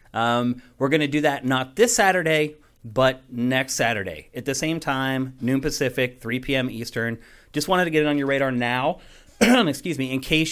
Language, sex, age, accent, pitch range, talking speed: English, male, 30-49, American, 125-155 Hz, 195 wpm